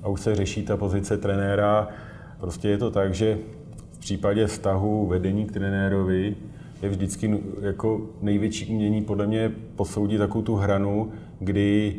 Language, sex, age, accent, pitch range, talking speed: Czech, male, 30-49, native, 90-100 Hz, 150 wpm